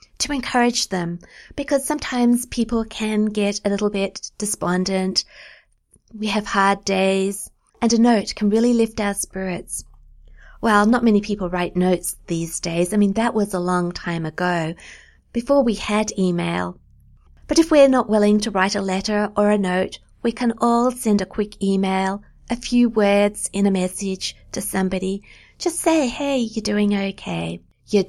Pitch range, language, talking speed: 180-225 Hz, English, 165 wpm